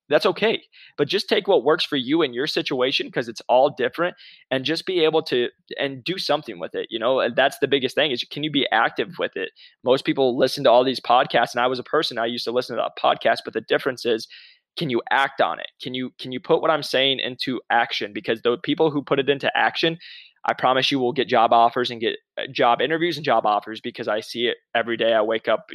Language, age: English, 20-39